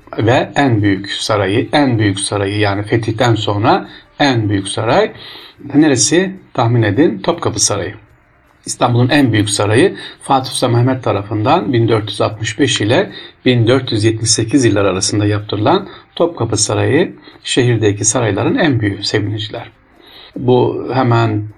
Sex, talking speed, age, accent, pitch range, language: male, 110 wpm, 50-69, native, 105-125 Hz, Turkish